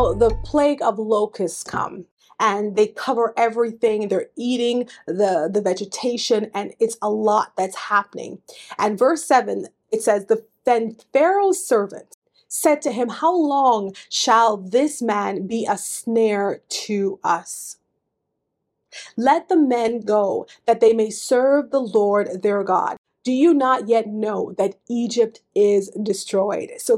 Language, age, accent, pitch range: English, 30-49, American, 210-280 Hz